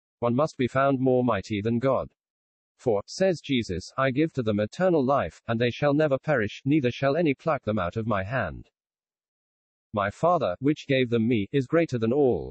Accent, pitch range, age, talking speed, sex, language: British, 110-145 Hz, 40-59, 195 wpm, male, English